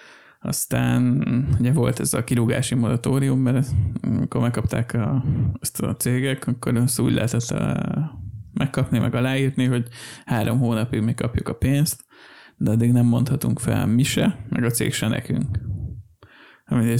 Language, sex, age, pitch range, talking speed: Hungarian, male, 20-39, 115-130 Hz, 145 wpm